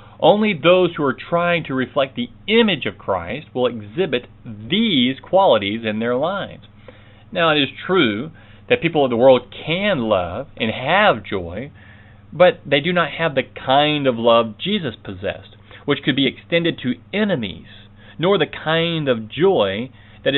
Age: 40-59